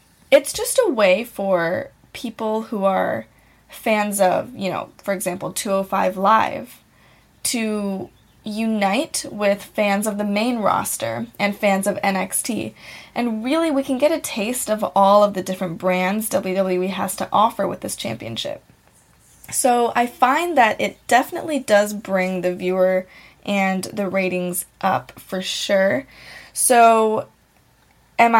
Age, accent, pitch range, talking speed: 10-29, American, 195-255 Hz, 140 wpm